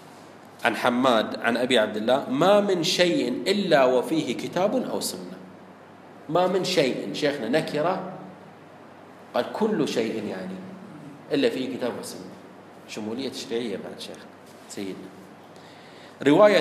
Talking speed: 120 wpm